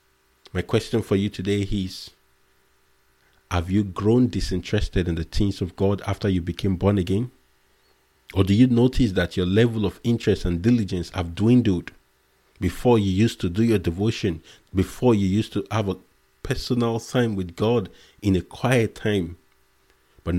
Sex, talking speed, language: male, 160 wpm, English